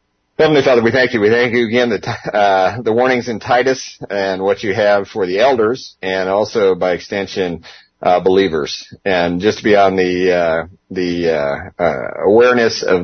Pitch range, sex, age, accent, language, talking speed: 90-105 Hz, male, 40-59, American, English, 190 wpm